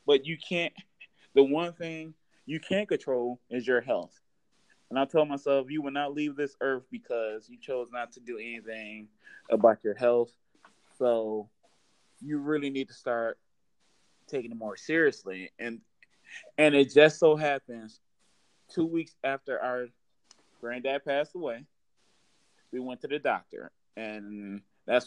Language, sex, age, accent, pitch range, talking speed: English, male, 20-39, American, 115-140 Hz, 150 wpm